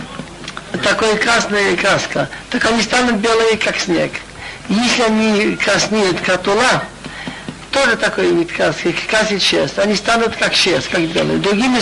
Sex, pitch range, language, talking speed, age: male, 200-240 Hz, Russian, 125 wpm, 60-79